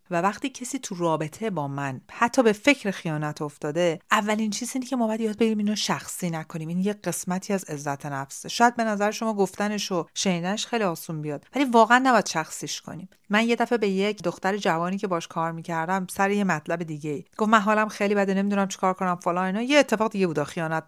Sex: female